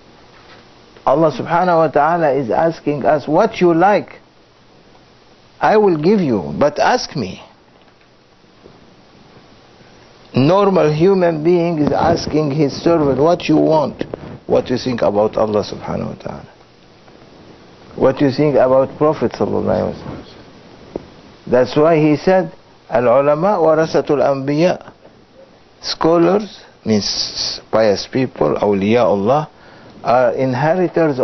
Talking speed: 110 wpm